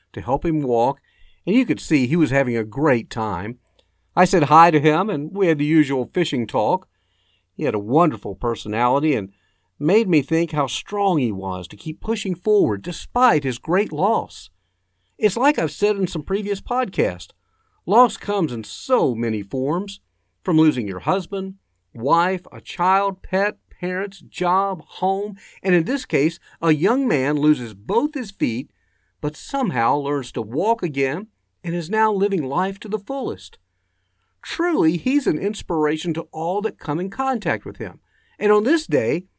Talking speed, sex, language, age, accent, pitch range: 170 wpm, male, English, 50-69, American, 120-200 Hz